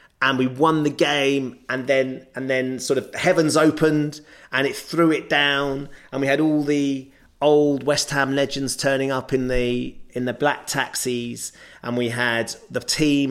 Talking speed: 180 wpm